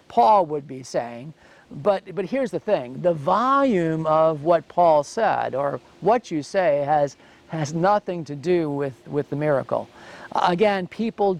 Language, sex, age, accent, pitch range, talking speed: English, male, 50-69, American, 150-195 Hz, 160 wpm